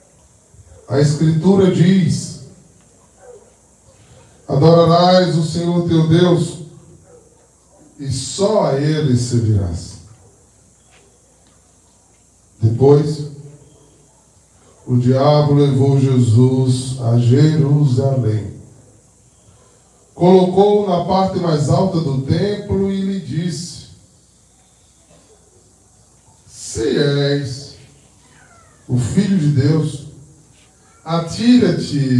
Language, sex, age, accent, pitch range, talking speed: Portuguese, male, 20-39, Brazilian, 120-165 Hz, 70 wpm